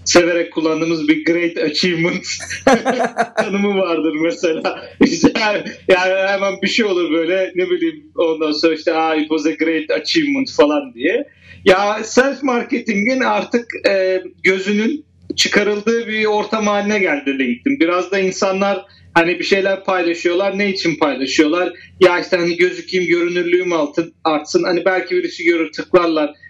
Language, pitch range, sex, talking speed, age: Turkish, 160-245 Hz, male, 130 wpm, 40-59